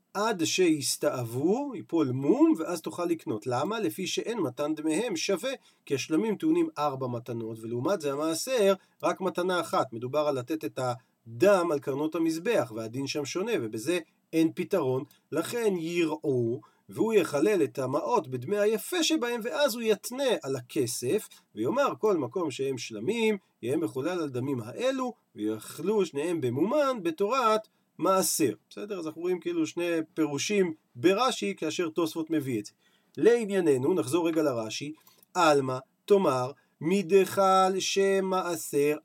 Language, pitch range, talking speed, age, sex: Hebrew, 150-205 Hz, 135 wpm, 40-59, male